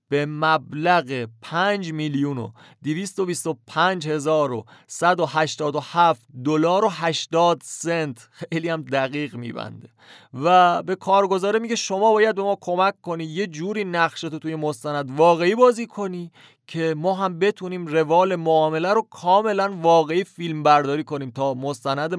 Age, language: 30-49, Persian